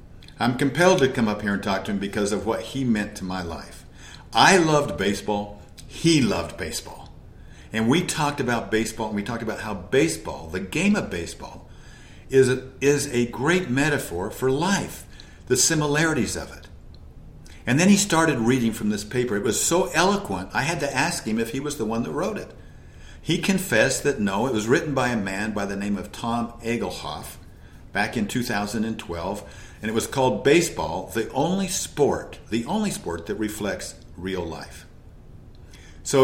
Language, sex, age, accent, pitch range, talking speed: English, male, 50-69, American, 100-135 Hz, 180 wpm